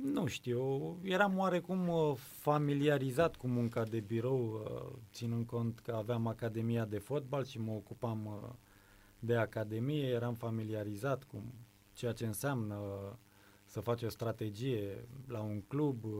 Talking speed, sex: 125 wpm, male